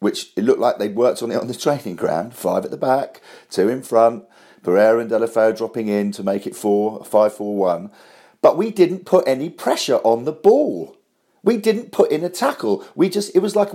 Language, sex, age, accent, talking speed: English, male, 40-59, British, 220 wpm